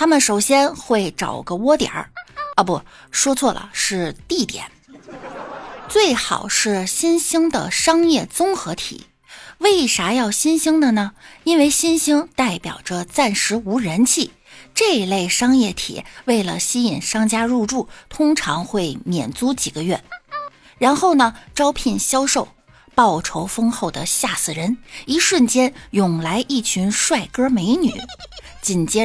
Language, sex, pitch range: Chinese, female, 205-300 Hz